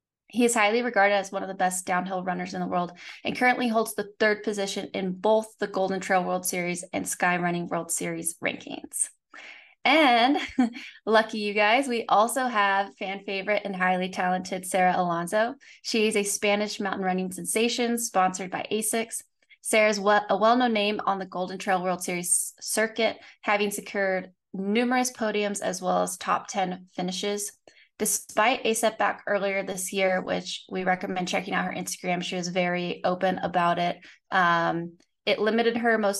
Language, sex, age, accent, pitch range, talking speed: English, female, 20-39, American, 185-220 Hz, 170 wpm